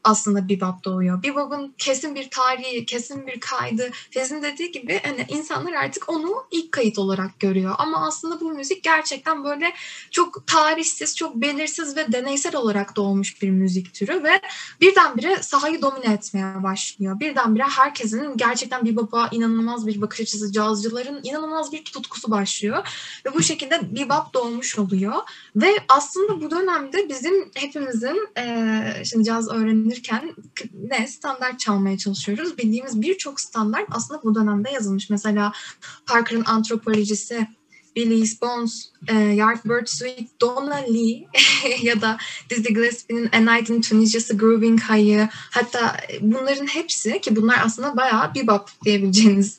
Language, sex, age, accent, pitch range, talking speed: Turkish, female, 10-29, native, 215-275 Hz, 135 wpm